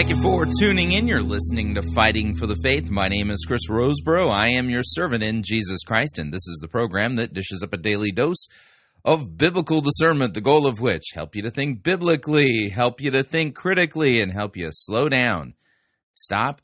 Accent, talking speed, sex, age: American, 210 wpm, male, 30-49